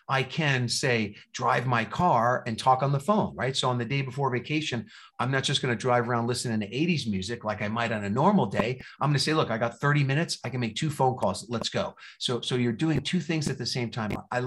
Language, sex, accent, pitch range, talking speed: English, male, American, 115-150 Hz, 265 wpm